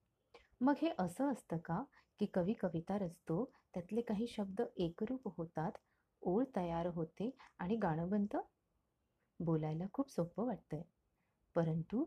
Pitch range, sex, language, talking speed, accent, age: 170-240 Hz, female, Marathi, 120 wpm, native, 30-49